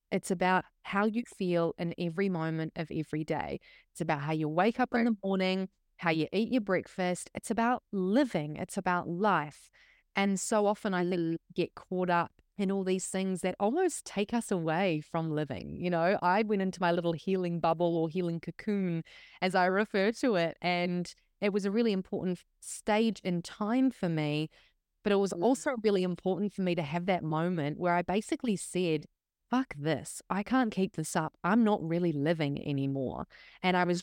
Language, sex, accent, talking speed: English, female, Australian, 190 wpm